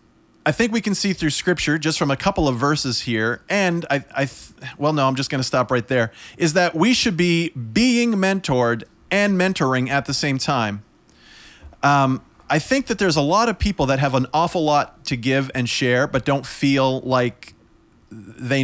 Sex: male